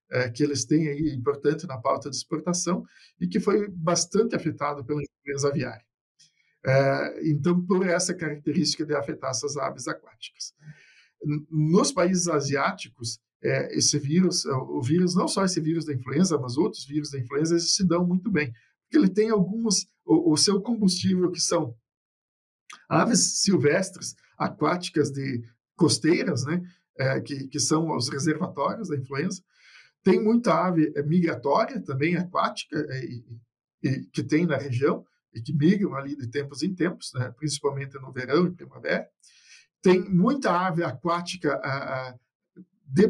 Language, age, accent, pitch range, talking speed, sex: Portuguese, 50-69, Brazilian, 140-180 Hz, 140 wpm, male